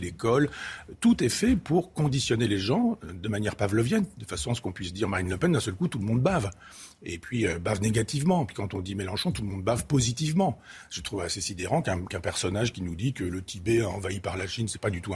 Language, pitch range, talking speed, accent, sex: French, 100-140 Hz, 255 wpm, French, male